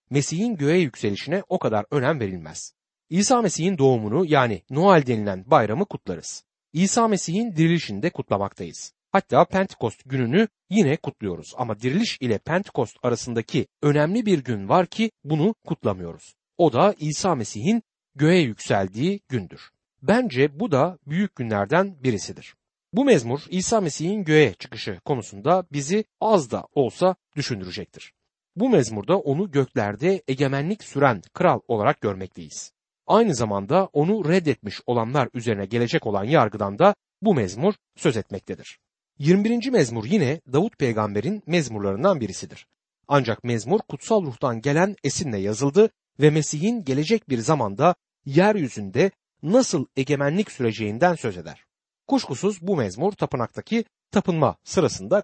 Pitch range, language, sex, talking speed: 120-195 Hz, Turkish, male, 125 wpm